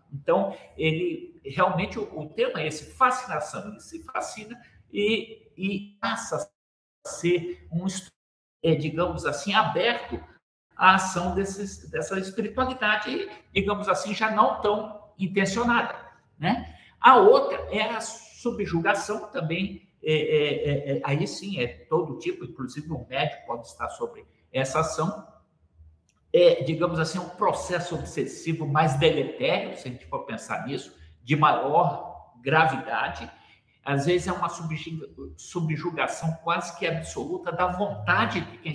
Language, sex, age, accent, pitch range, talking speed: Portuguese, male, 60-79, Brazilian, 150-205 Hz, 130 wpm